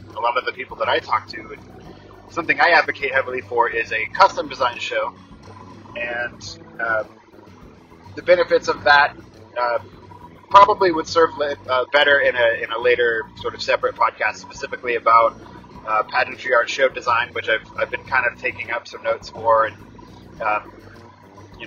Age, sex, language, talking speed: 30-49, male, English, 175 wpm